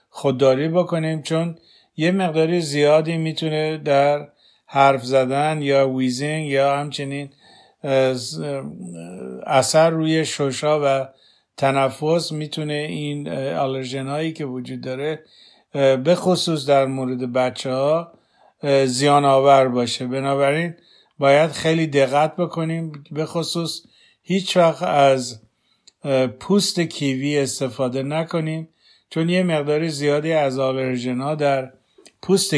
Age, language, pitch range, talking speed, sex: 50-69, Persian, 135-160 Hz, 100 wpm, male